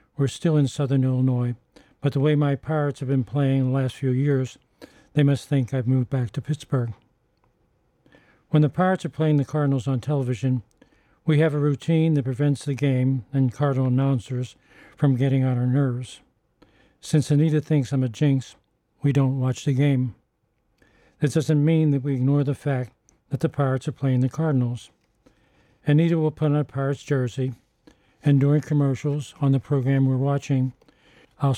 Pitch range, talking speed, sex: 130-145 Hz, 175 wpm, male